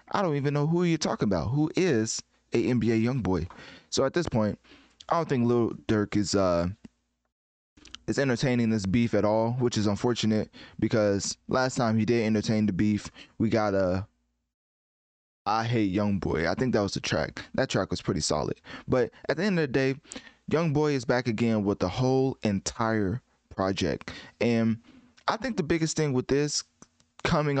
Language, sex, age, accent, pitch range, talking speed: English, male, 20-39, American, 105-130 Hz, 185 wpm